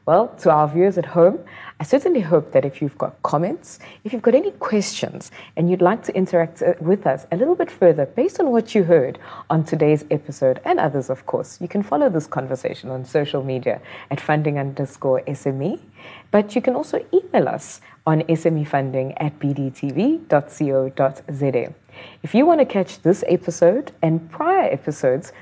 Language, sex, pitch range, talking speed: English, female, 140-210 Hz, 175 wpm